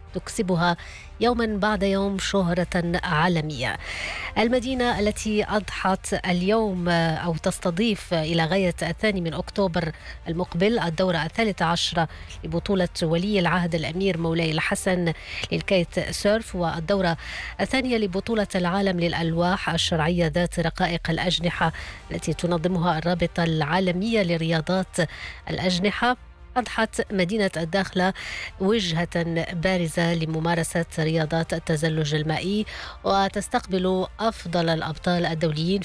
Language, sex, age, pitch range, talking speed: English, female, 20-39, 165-195 Hz, 95 wpm